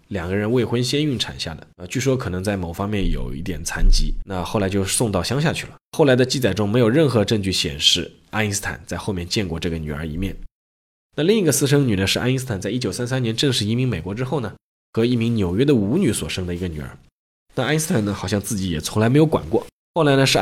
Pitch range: 95-130 Hz